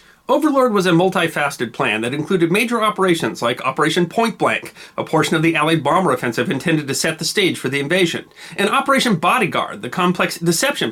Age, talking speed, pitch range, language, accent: 40-59, 185 wpm, 170-215 Hz, English, American